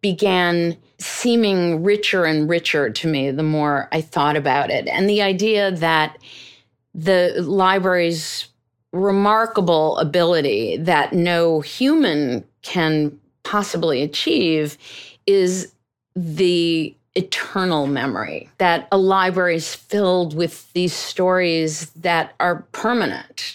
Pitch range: 155-185 Hz